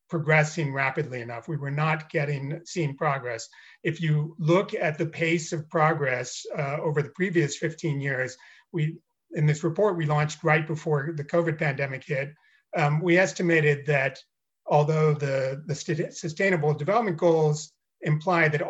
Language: English